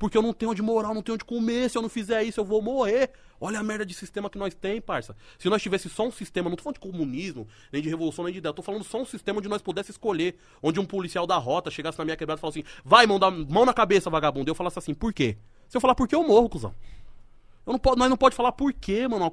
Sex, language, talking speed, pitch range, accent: male, Portuguese, 300 wpm, 155-220 Hz, Brazilian